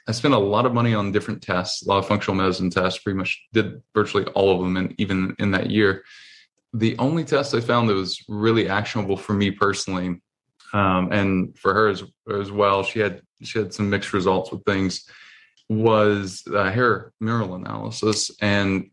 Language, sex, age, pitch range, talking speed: English, male, 20-39, 95-110 Hz, 195 wpm